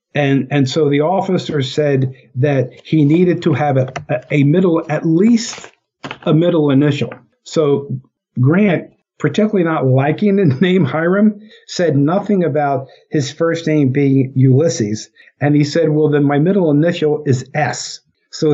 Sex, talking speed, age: male, 150 wpm, 50-69